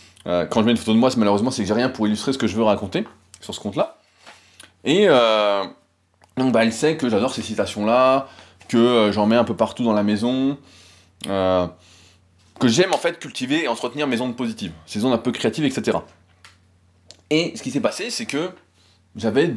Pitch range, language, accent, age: 95-130 Hz, French, French, 20-39